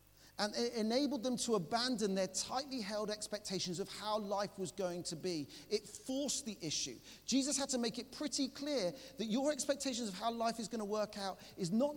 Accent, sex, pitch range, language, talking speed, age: British, male, 175-235 Hz, English, 205 wpm, 40-59